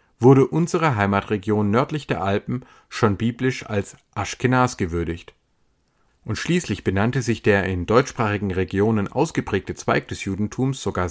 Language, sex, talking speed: German, male, 130 wpm